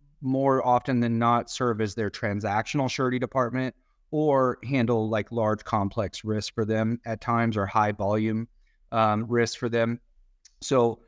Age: 30-49